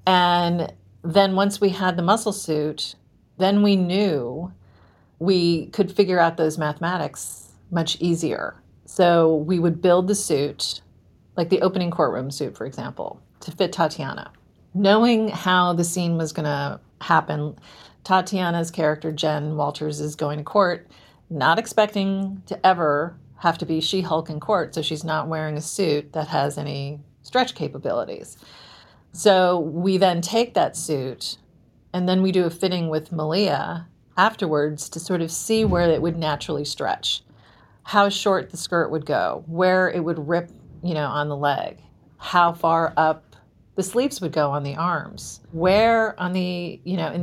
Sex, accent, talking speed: female, American, 160 wpm